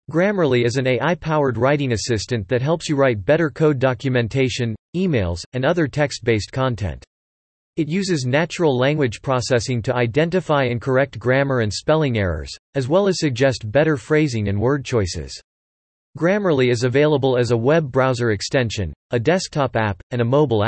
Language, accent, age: English, American, 40-59